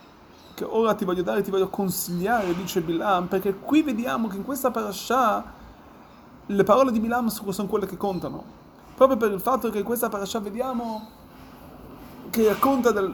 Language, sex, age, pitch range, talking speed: Italian, male, 30-49, 195-245 Hz, 170 wpm